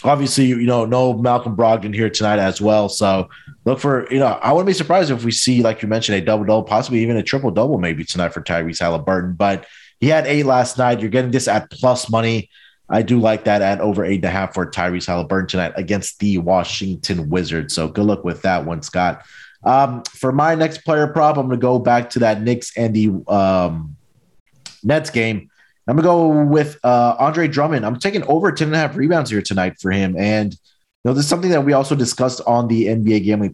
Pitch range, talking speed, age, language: 100-130 Hz, 225 wpm, 30-49, English